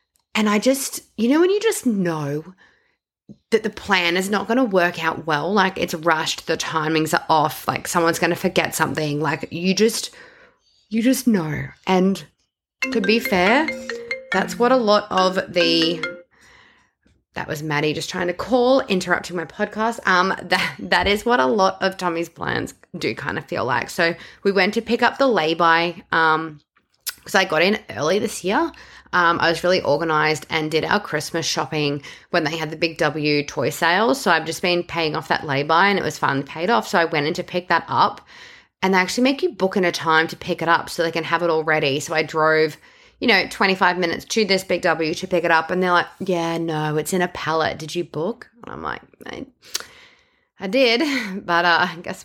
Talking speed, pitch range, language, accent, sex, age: 215 wpm, 160-215 Hz, English, Australian, female, 20-39